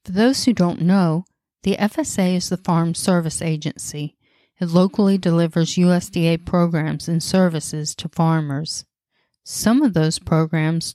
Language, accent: English, American